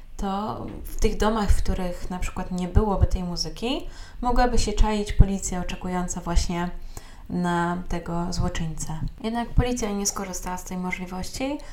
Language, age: Polish, 20-39